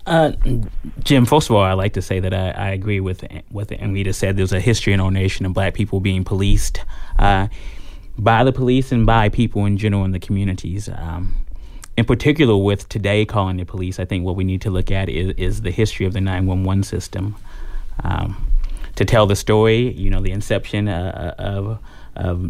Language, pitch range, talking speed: English, 95-115 Hz, 200 wpm